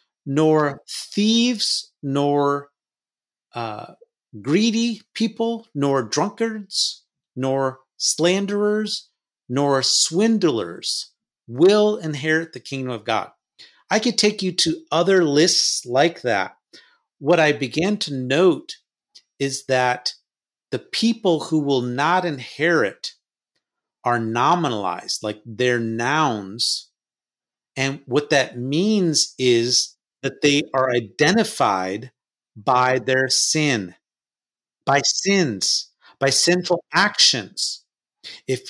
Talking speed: 100 wpm